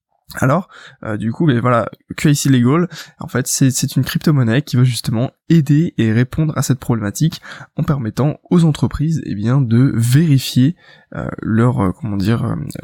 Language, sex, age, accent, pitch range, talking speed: French, male, 20-39, French, 120-150 Hz, 165 wpm